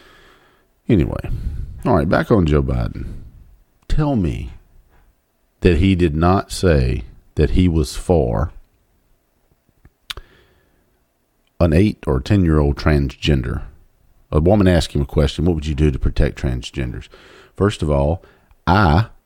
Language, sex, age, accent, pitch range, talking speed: English, male, 50-69, American, 75-95 Hz, 130 wpm